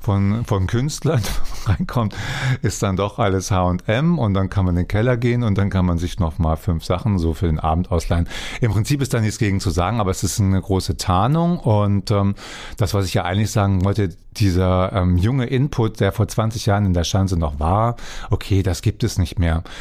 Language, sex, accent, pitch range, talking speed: German, male, German, 90-110 Hz, 220 wpm